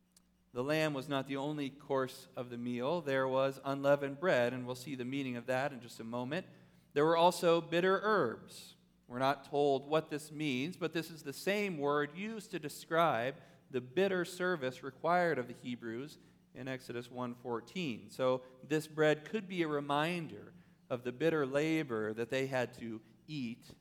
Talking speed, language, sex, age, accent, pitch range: 180 wpm, English, male, 40-59, American, 125-165 Hz